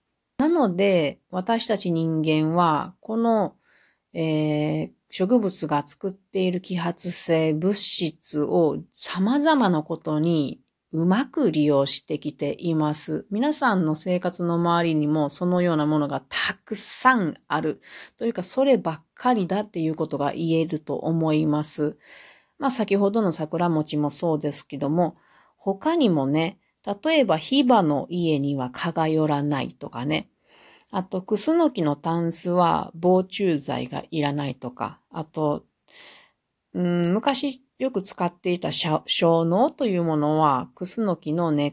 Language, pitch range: Japanese, 155-200 Hz